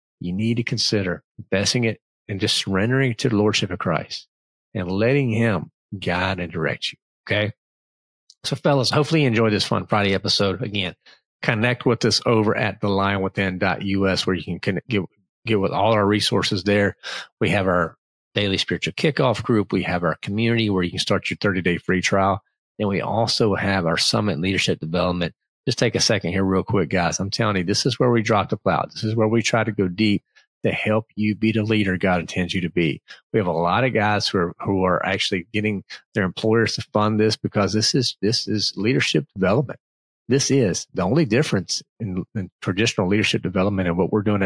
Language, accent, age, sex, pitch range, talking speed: English, American, 40-59, male, 95-115 Hz, 205 wpm